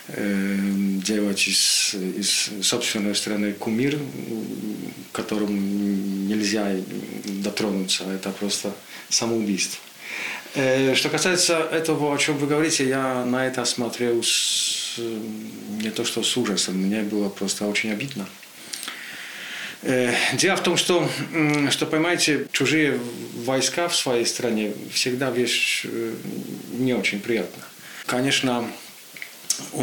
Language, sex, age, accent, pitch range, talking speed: Russian, male, 40-59, Polish, 100-125 Hz, 105 wpm